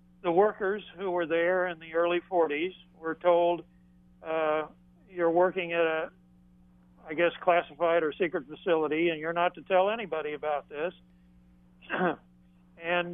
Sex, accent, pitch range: male, American, 150-180 Hz